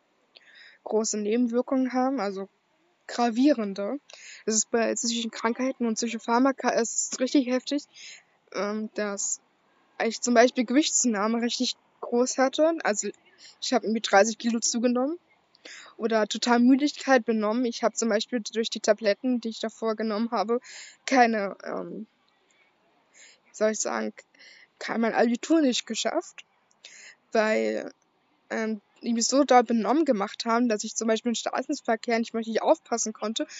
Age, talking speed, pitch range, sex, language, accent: 10-29, 135 wpm, 220-255 Hz, female, German, German